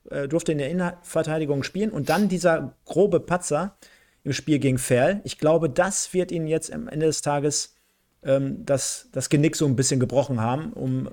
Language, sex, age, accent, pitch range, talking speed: German, male, 40-59, German, 125-160 Hz, 185 wpm